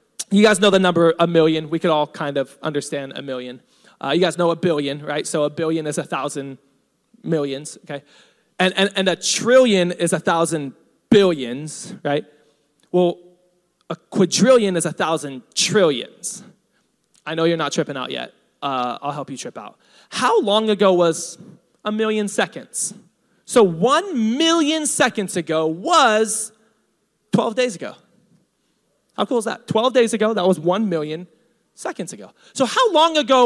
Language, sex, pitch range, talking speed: English, male, 160-215 Hz, 165 wpm